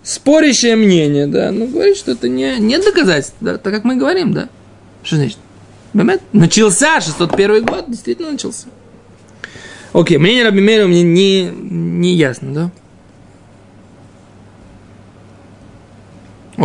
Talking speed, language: 110 wpm, Russian